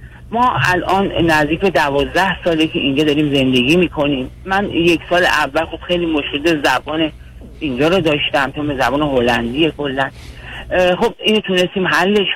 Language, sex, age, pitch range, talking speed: Persian, male, 40-59, 145-175 Hz, 135 wpm